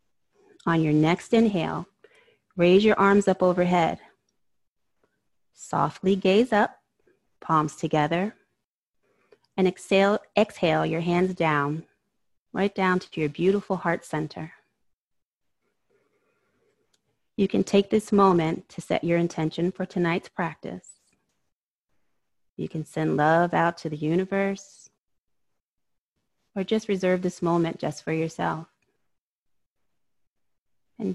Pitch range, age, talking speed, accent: 165-200 Hz, 30-49, 110 wpm, American